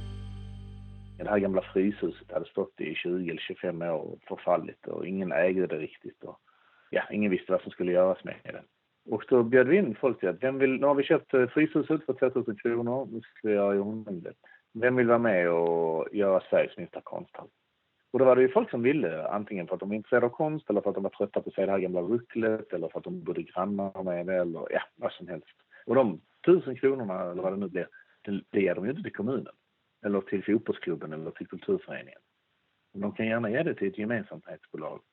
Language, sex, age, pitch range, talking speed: Swedish, male, 40-59, 95-130 Hz, 220 wpm